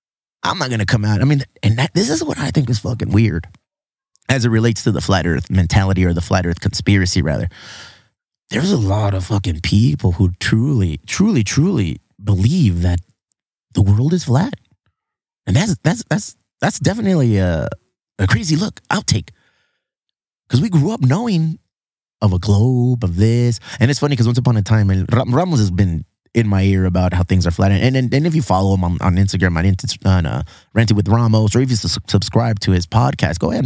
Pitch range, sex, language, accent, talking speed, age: 95-125 Hz, male, English, American, 210 wpm, 30-49